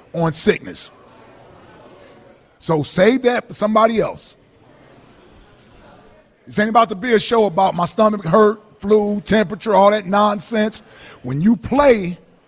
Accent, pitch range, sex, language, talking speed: American, 190-240 Hz, male, English, 130 wpm